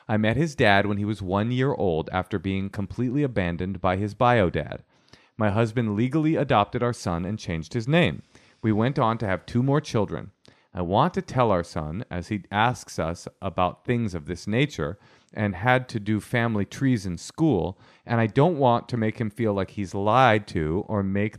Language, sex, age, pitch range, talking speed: English, male, 40-59, 95-120 Hz, 205 wpm